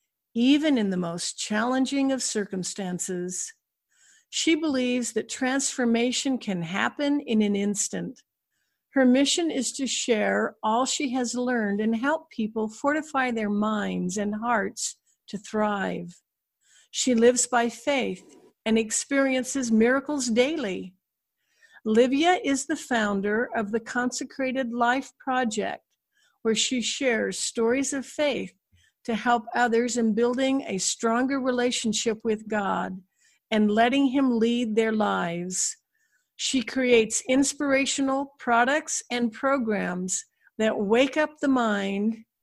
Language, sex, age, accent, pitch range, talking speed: English, female, 60-79, American, 215-270 Hz, 120 wpm